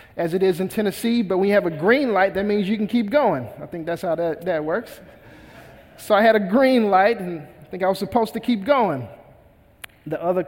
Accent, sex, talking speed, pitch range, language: American, male, 235 wpm, 155-205 Hz, English